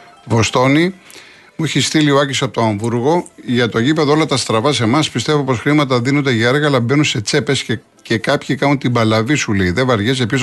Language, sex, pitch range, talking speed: Greek, male, 115-145 Hz, 220 wpm